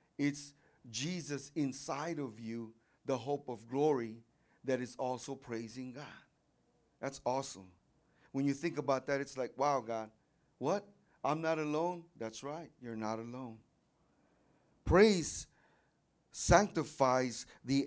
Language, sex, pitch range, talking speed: English, male, 120-150 Hz, 125 wpm